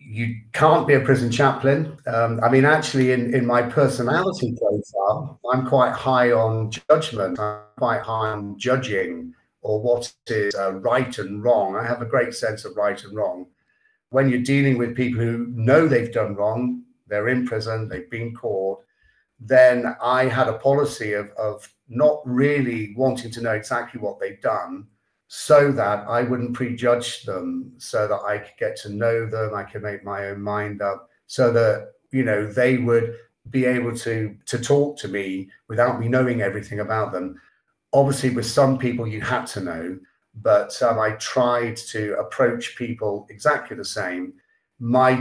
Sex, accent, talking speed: male, British, 175 wpm